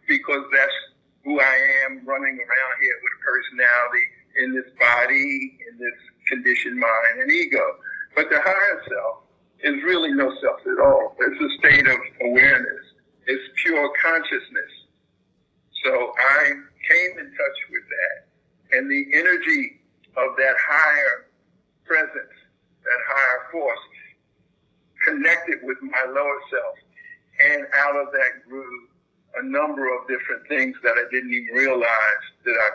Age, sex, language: 50-69, male, English